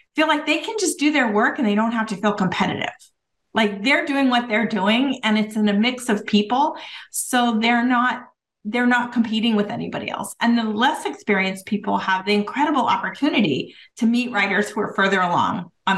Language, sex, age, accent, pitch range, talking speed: English, female, 40-59, American, 205-250 Hz, 200 wpm